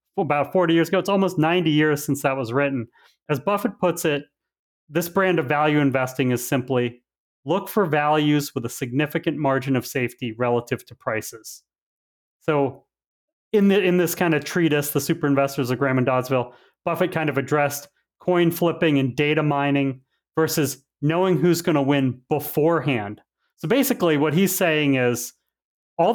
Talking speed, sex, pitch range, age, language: 170 wpm, male, 135-170 Hz, 30-49, English